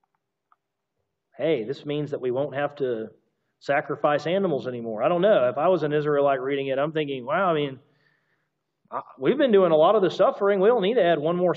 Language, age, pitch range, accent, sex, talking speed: English, 40-59, 120-185 Hz, American, male, 215 wpm